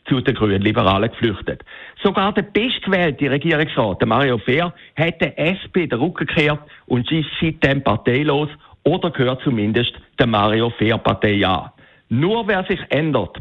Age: 60-79